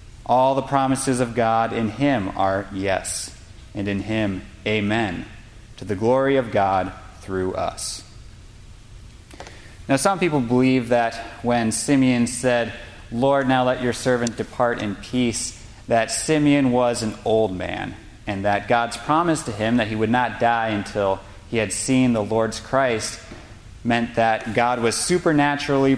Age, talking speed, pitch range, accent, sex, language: 30-49, 150 wpm, 105-125 Hz, American, male, English